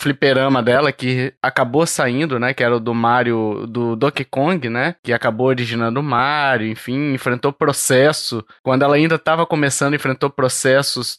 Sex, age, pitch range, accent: male, 20-39, 125-150 Hz, Brazilian